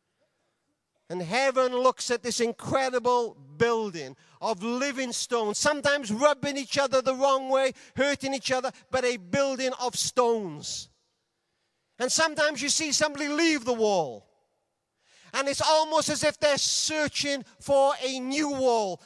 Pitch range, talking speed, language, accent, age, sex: 210-285 Hz, 140 wpm, English, British, 40-59, male